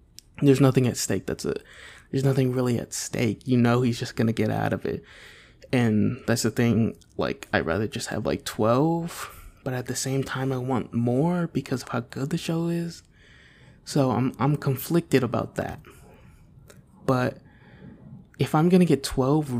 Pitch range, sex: 110-135 Hz, male